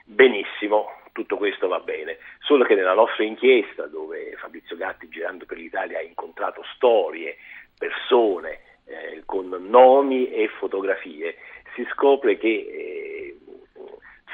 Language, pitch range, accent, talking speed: Italian, 355-435 Hz, native, 120 wpm